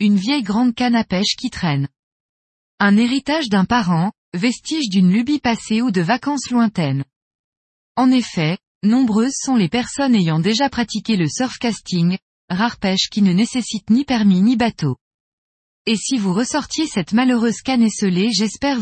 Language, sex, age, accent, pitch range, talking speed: French, female, 20-39, French, 185-245 Hz, 160 wpm